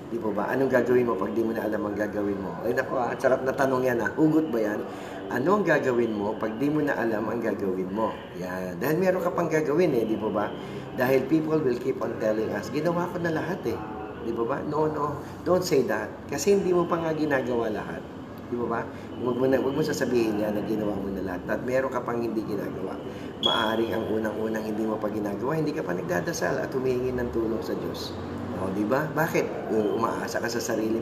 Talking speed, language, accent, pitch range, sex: 225 wpm, English, Filipino, 105-130 Hz, male